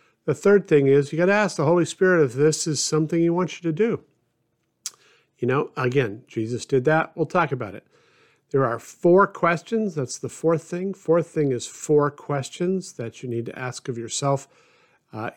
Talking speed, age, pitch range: 200 wpm, 50-69, 125-165 Hz